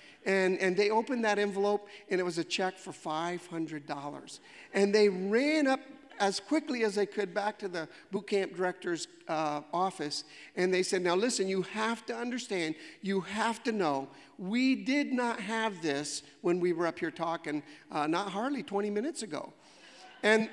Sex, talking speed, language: male, 180 wpm, English